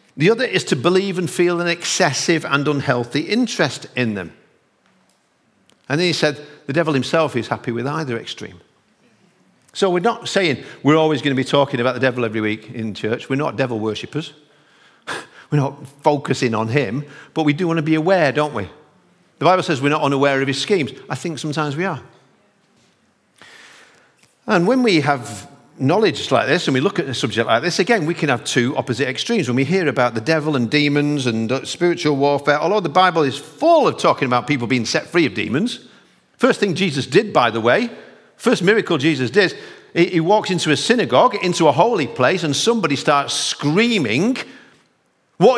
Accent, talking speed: British, 195 wpm